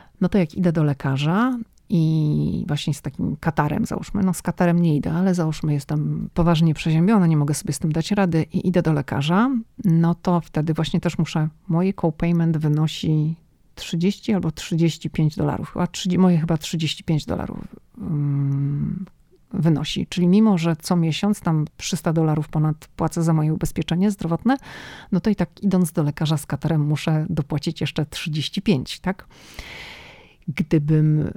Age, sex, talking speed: 40-59, female, 155 wpm